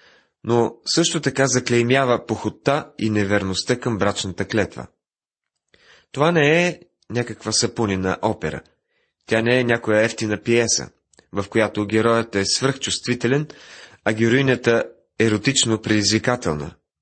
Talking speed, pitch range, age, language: 115 wpm, 100-125 Hz, 30-49, Bulgarian